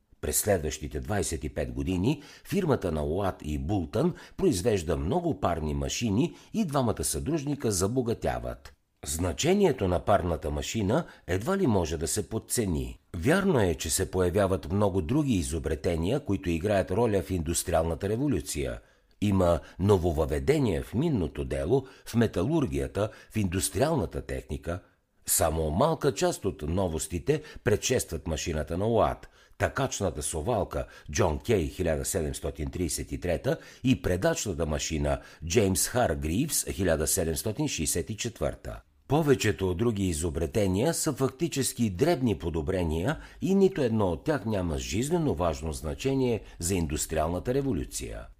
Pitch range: 80-125 Hz